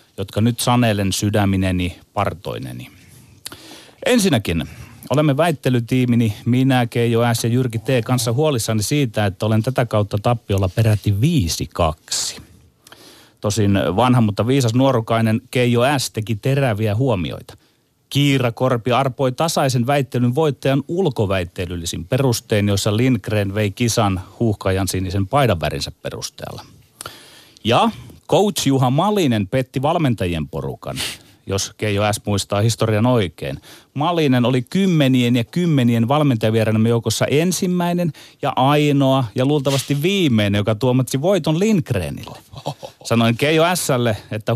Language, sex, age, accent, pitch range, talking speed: Finnish, male, 30-49, native, 105-135 Hz, 115 wpm